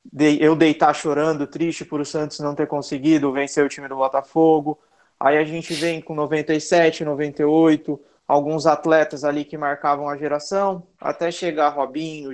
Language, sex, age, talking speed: Portuguese, male, 20-39, 155 wpm